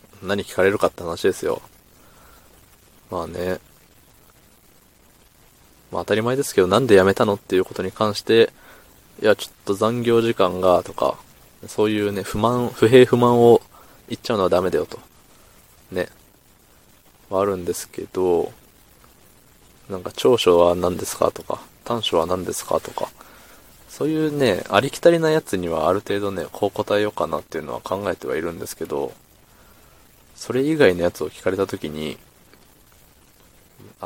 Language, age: Japanese, 20-39